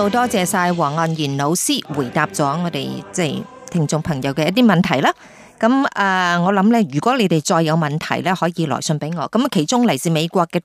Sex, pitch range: female, 155-215 Hz